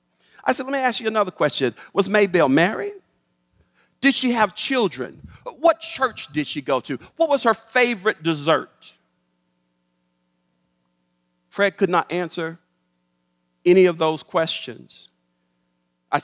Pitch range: 140-220 Hz